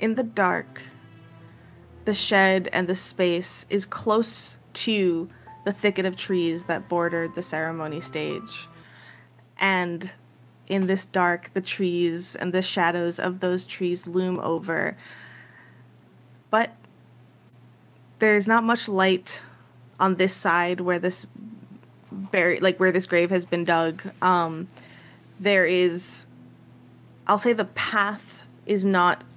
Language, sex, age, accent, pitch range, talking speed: English, female, 20-39, American, 170-190 Hz, 125 wpm